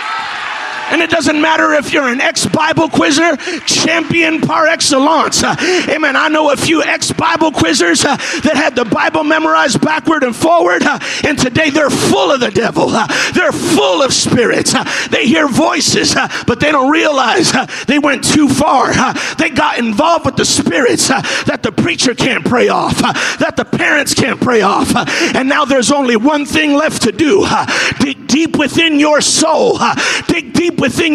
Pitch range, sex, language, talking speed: 265-320 Hz, male, English, 185 wpm